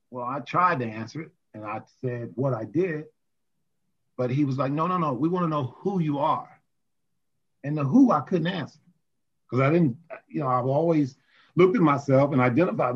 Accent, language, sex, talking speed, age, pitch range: American, English, male, 200 wpm, 40-59, 130-165 Hz